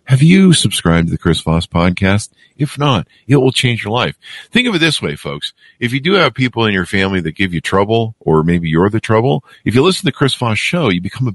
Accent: American